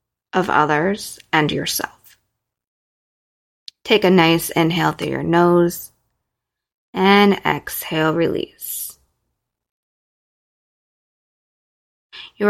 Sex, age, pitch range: female, 20-39, 160-190 Hz